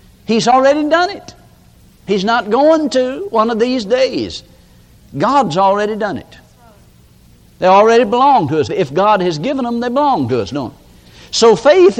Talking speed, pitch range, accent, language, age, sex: 170 wpm, 160-240 Hz, American, English, 60-79, male